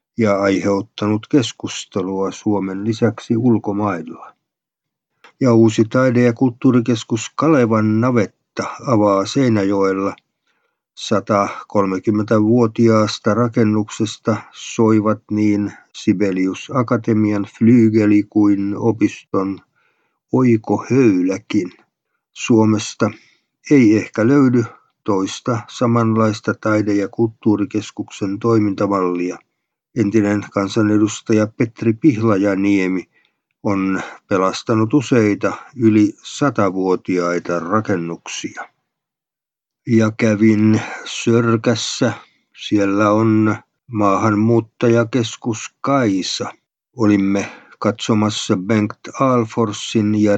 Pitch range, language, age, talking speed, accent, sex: 100-115 Hz, Finnish, 50-69, 70 wpm, native, male